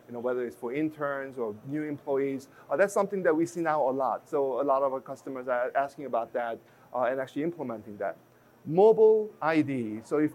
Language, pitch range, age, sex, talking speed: English, 130-160 Hz, 30-49, male, 215 wpm